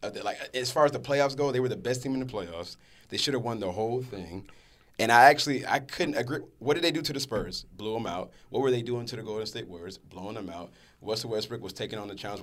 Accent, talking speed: American, 275 wpm